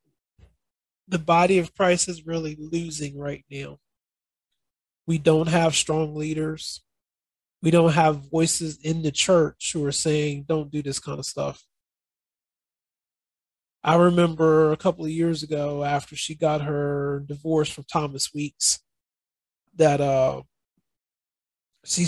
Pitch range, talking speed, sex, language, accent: 140-165 Hz, 130 wpm, male, English, American